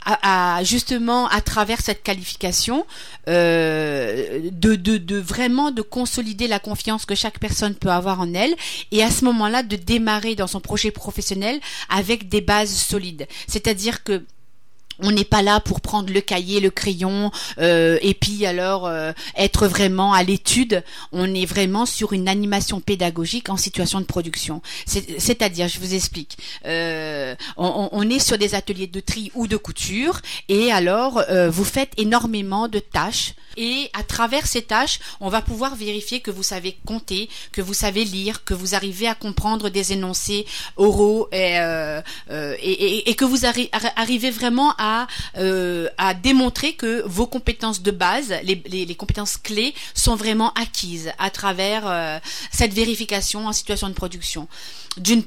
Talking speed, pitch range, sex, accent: 170 wpm, 190-230 Hz, female, French